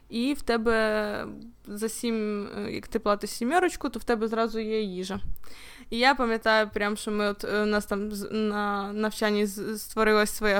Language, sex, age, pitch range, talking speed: Ukrainian, female, 20-39, 210-255 Hz, 165 wpm